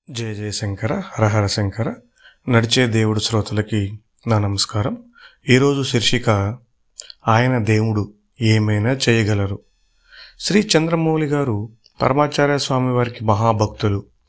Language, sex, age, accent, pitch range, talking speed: Telugu, male, 30-49, native, 110-135 Hz, 90 wpm